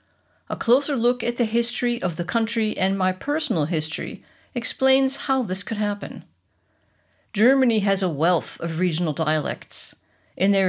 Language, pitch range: English, 170-235 Hz